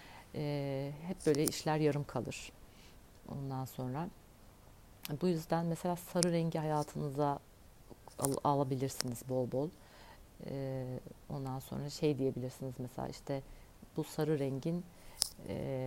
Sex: female